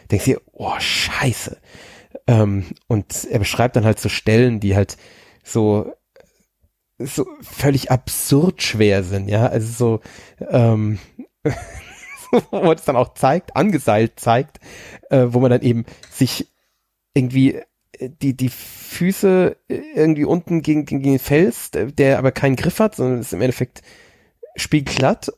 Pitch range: 125-165 Hz